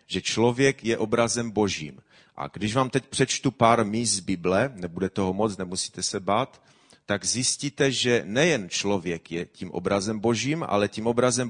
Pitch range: 95-125 Hz